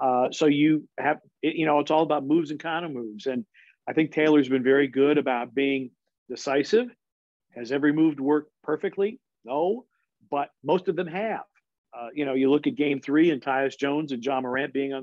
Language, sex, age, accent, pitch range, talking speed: English, male, 50-69, American, 130-155 Hz, 205 wpm